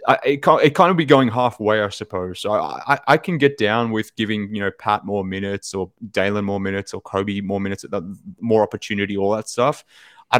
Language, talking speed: English, 210 wpm